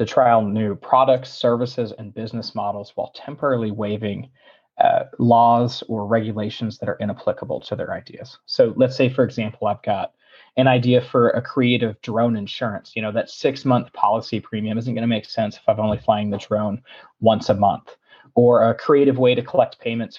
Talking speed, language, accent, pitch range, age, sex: 185 wpm, English, American, 110-130 Hz, 20-39, male